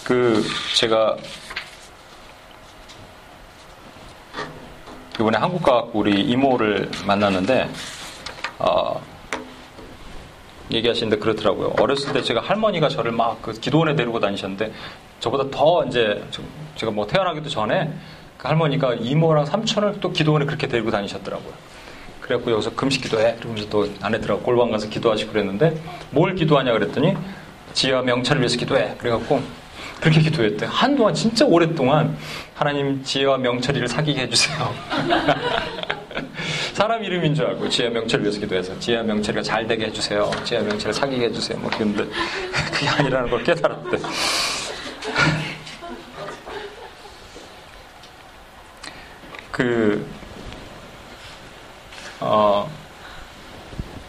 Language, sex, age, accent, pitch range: Korean, male, 40-59, native, 105-150 Hz